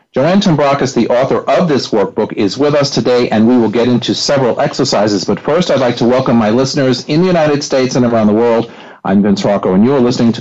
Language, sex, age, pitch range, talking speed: English, male, 50-69, 110-145 Hz, 240 wpm